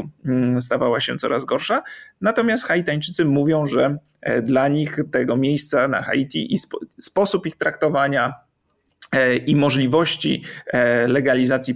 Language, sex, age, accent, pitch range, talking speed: Polish, male, 40-59, native, 140-180 Hz, 110 wpm